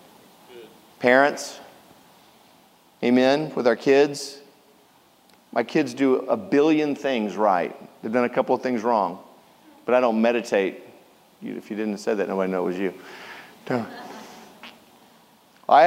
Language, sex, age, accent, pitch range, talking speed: English, male, 40-59, American, 115-155 Hz, 130 wpm